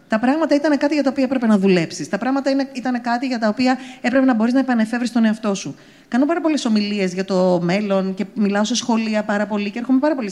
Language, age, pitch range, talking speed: English, 30-49, 200-280 Hz, 245 wpm